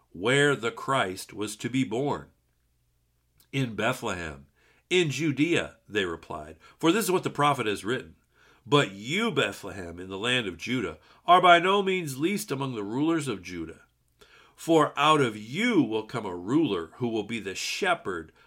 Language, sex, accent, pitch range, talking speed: English, male, American, 100-155 Hz, 170 wpm